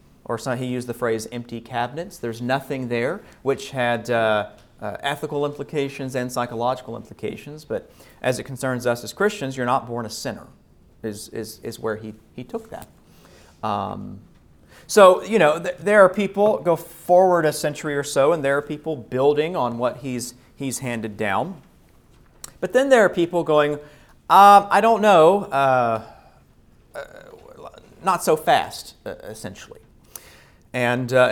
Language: English